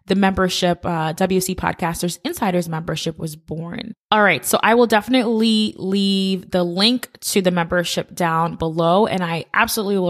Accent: American